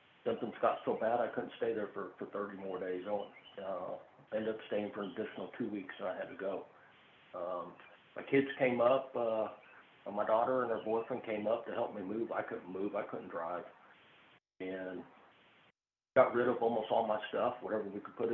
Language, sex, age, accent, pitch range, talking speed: English, male, 50-69, American, 105-125 Hz, 210 wpm